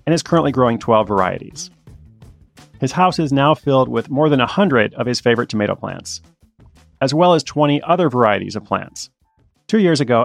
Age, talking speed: 30-49, 180 wpm